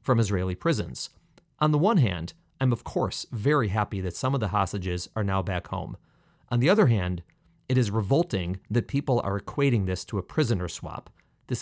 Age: 40-59